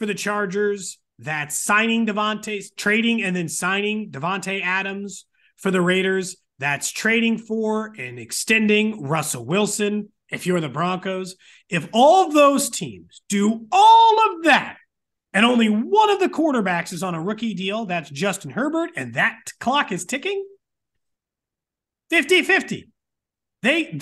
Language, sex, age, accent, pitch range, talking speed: English, male, 30-49, American, 180-255 Hz, 140 wpm